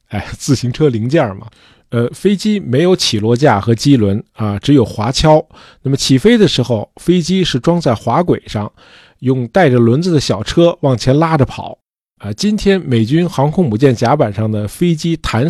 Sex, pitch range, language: male, 115-160 Hz, Chinese